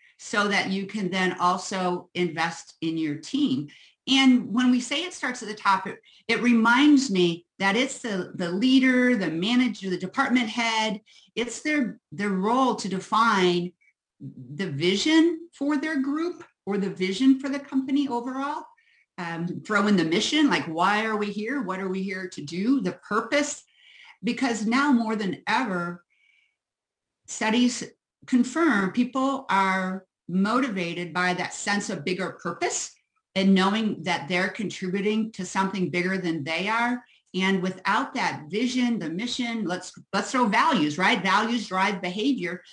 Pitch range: 185-250 Hz